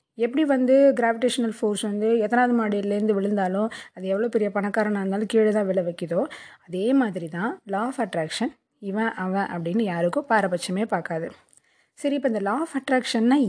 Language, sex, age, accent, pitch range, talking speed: Tamil, female, 20-39, native, 190-250 Hz, 155 wpm